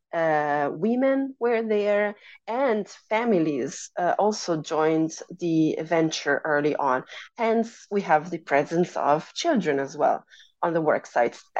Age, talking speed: 30-49, 135 wpm